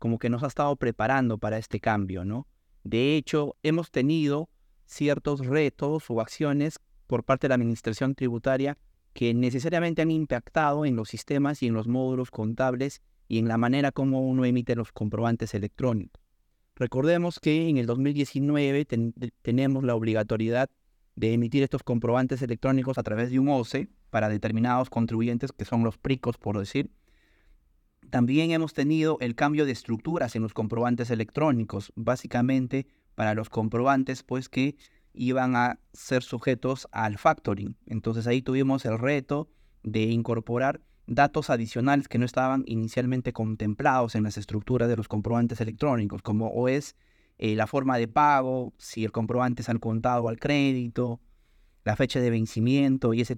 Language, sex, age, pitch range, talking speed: Spanish, male, 30-49, 110-135 Hz, 155 wpm